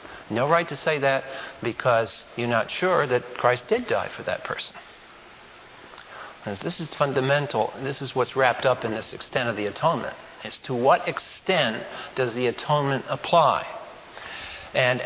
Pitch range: 130-185 Hz